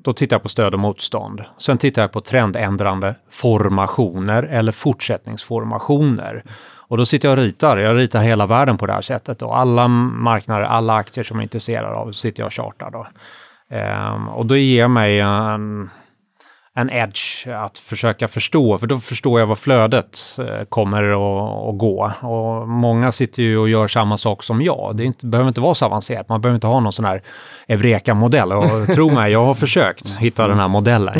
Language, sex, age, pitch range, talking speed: Swedish, male, 30-49, 105-120 Hz, 190 wpm